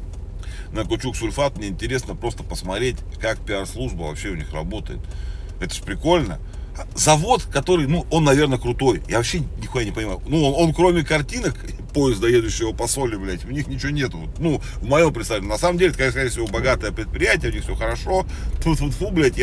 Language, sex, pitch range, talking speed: Russian, male, 75-110 Hz, 185 wpm